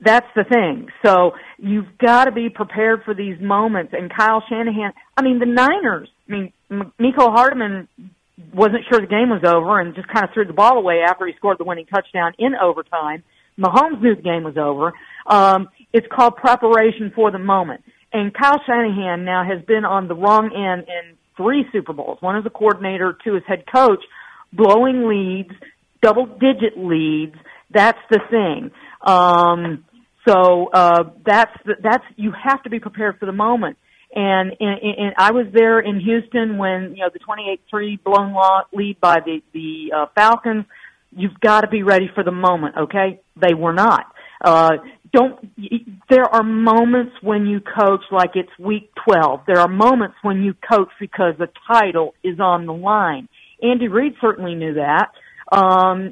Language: English